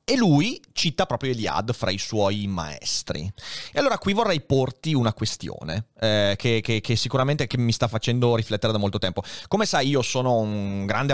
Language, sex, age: Italian, male, 30-49